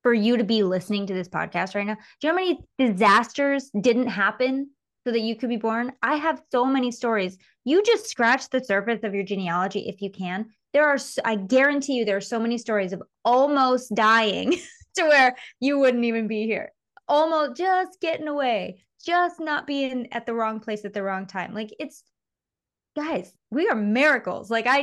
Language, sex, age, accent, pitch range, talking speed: English, female, 20-39, American, 205-275 Hz, 200 wpm